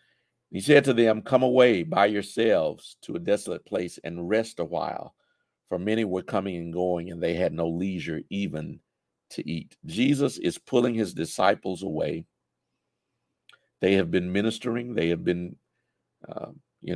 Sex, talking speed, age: male, 160 wpm, 50-69